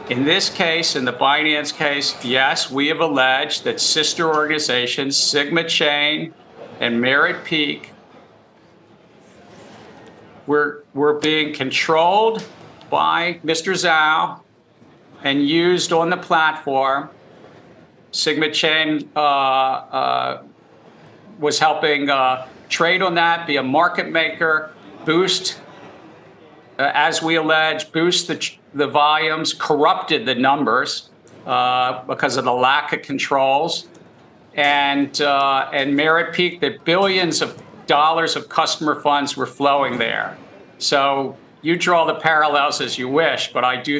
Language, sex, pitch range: English, male, 135-160 Hz